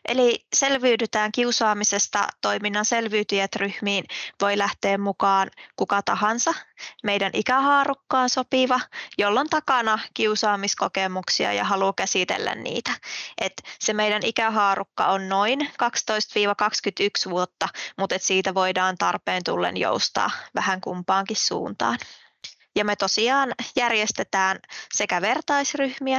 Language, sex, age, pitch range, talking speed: Finnish, female, 20-39, 195-230 Hz, 105 wpm